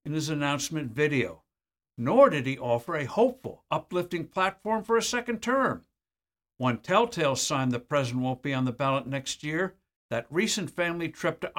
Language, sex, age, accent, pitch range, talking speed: English, male, 60-79, American, 125-190 Hz, 170 wpm